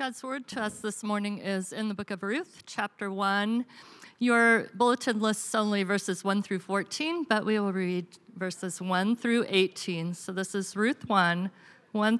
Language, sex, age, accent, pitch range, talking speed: English, female, 50-69, American, 190-235 Hz, 175 wpm